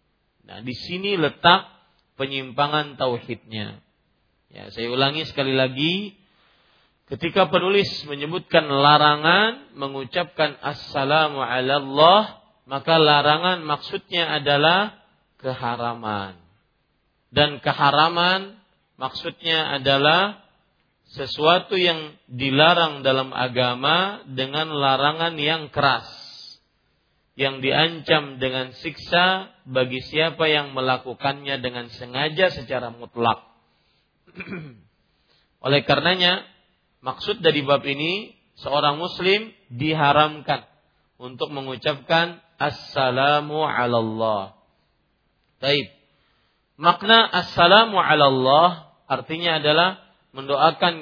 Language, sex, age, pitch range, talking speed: Malay, male, 40-59, 130-170 Hz, 85 wpm